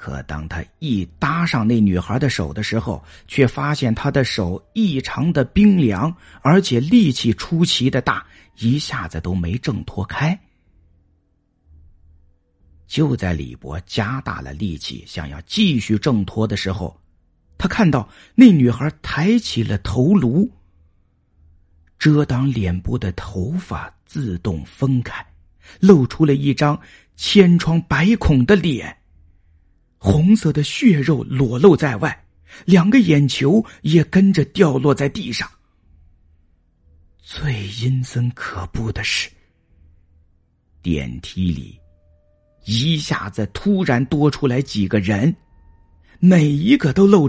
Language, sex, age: Chinese, male, 50-69